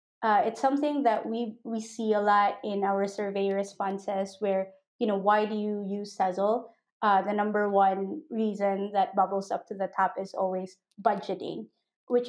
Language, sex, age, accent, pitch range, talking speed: English, female, 20-39, Filipino, 195-245 Hz, 175 wpm